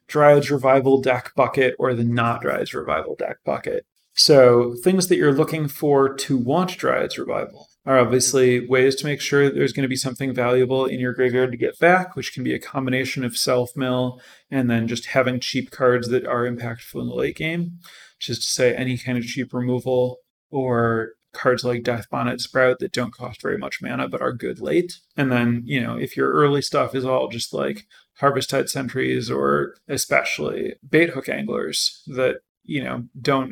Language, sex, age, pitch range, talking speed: English, male, 30-49, 125-150 Hz, 190 wpm